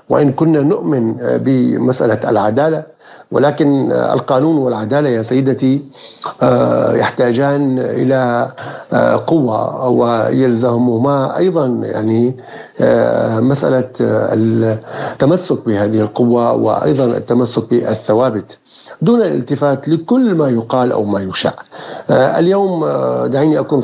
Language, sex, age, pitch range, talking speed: Arabic, male, 50-69, 110-135 Hz, 90 wpm